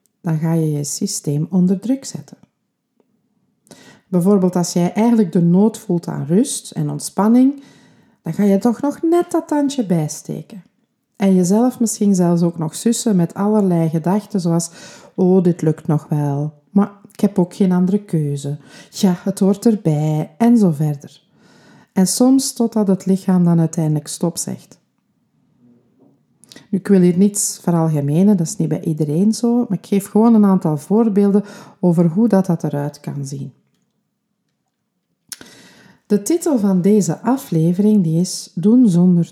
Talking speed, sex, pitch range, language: 155 wpm, female, 165-215 Hz, Dutch